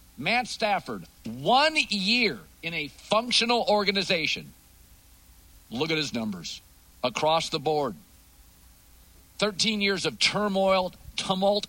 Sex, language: male, English